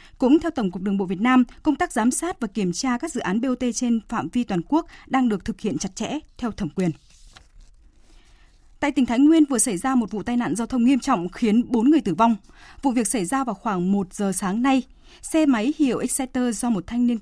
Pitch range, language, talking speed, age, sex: 200-255 Hz, Vietnamese, 250 wpm, 20-39, female